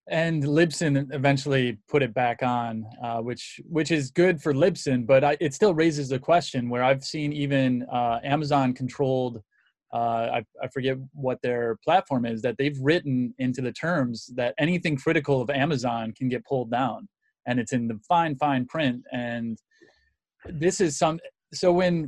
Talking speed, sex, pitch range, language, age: 170 wpm, male, 120-155 Hz, English, 20-39